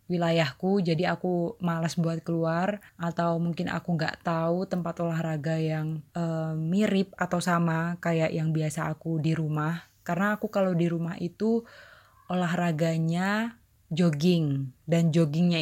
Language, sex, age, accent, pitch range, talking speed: Indonesian, female, 20-39, native, 160-180 Hz, 130 wpm